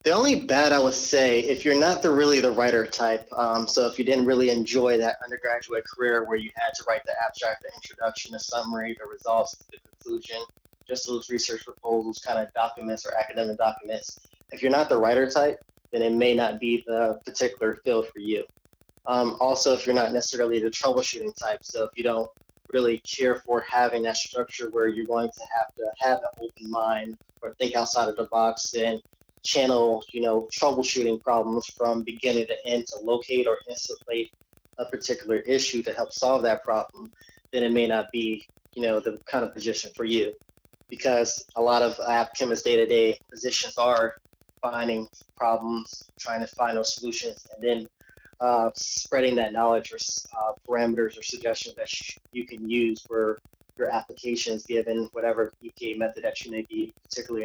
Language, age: English, 20-39